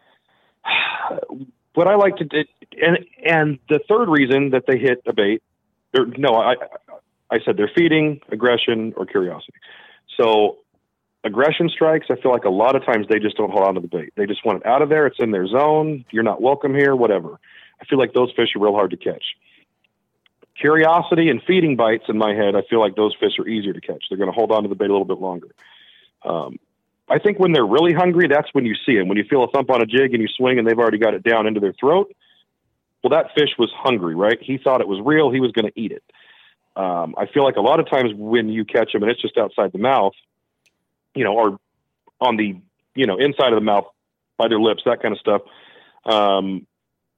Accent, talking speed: American, 235 wpm